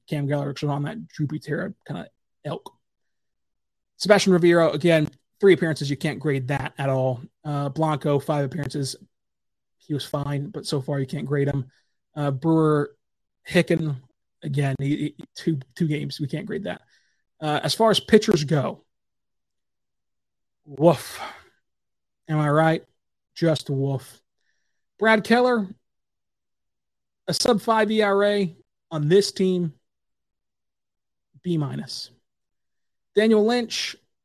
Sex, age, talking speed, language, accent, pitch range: male, 30-49, 125 wpm, English, American, 145-190 Hz